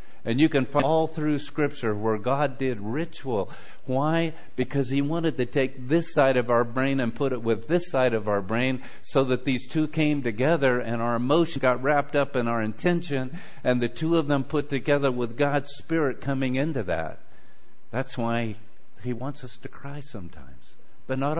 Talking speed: 195 wpm